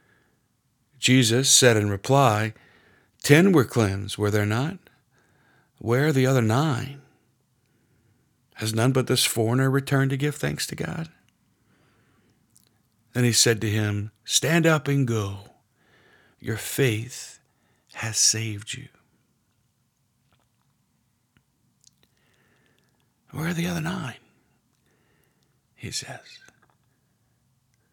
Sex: male